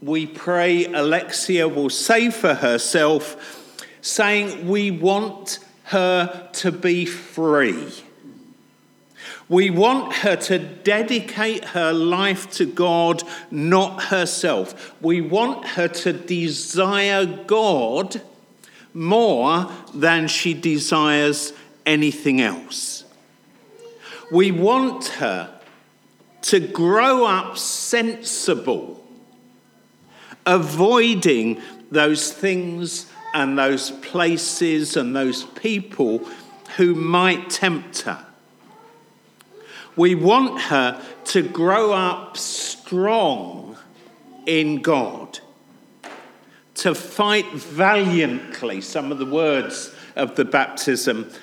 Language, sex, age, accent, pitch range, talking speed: English, male, 50-69, British, 155-195 Hz, 90 wpm